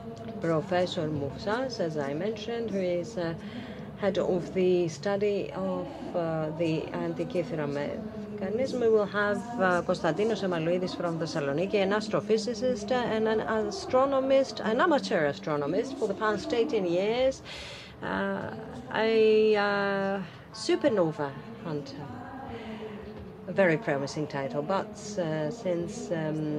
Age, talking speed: 40-59, 115 wpm